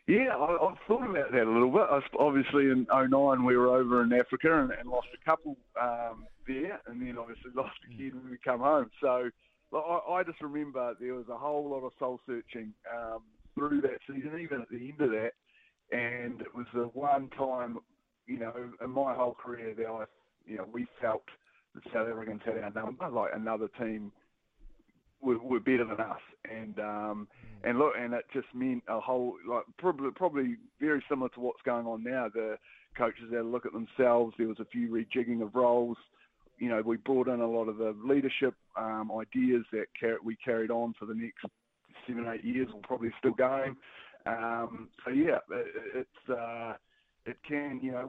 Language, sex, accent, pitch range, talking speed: English, male, Australian, 115-135 Hz, 200 wpm